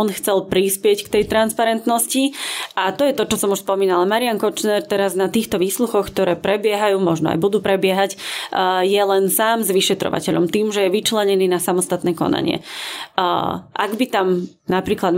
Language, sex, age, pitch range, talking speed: Slovak, female, 20-39, 185-215 Hz, 165 wpm